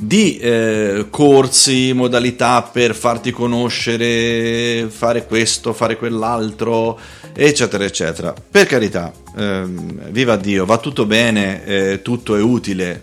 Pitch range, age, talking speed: 95-125 Hz, 30-49, 115 wpm